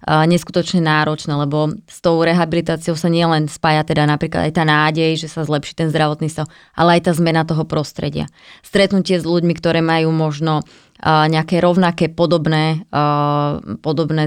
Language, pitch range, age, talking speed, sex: Slovak, 155-175 Hz, 20-39, 150 wpm, female